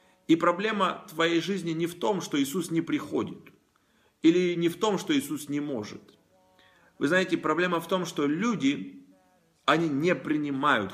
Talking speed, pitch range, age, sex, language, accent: 160 wpm, 140-185 Hz, 30-49, male, Russian, native